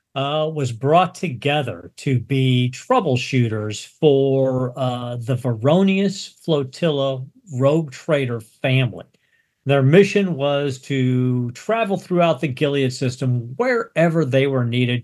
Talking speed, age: 110 wpm, 50-69